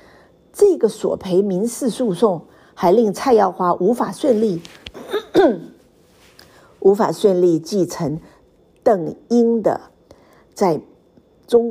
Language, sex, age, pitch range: Chinese, female, 50-69, 170-230 Hz